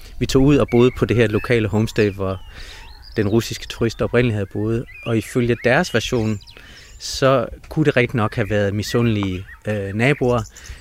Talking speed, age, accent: 170 wpm, 30-49, native